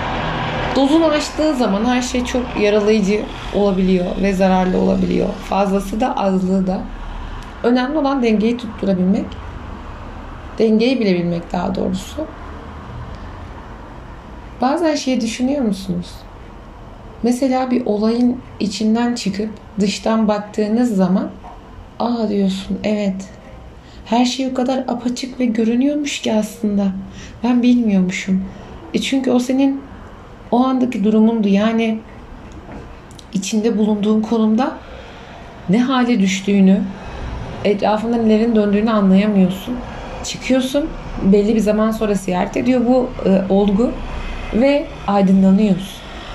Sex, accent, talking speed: female, native, 100 wpm